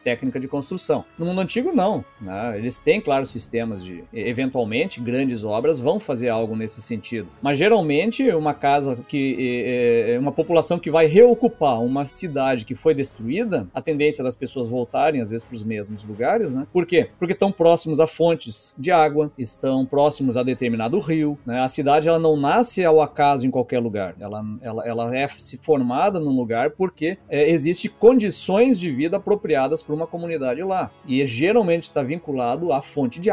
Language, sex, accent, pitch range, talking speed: Portuguese, male, Brazilian, 125-165 Hz, 180 wpm